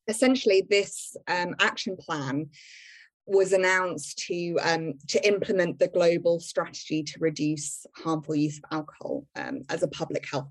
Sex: female